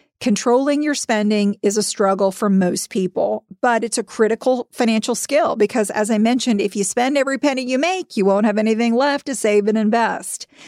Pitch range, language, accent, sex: 210-270 Hz, English, American, female